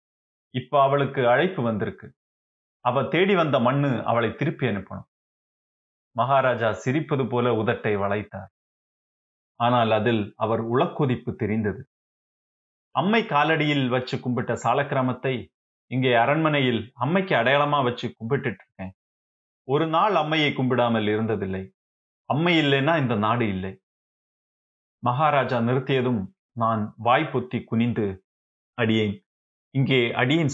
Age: 30-49